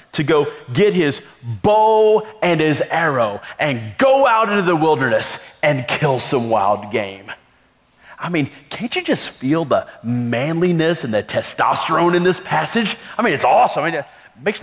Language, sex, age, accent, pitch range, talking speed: English, male, 30-49, American, 135-185 Hz, 160 wpm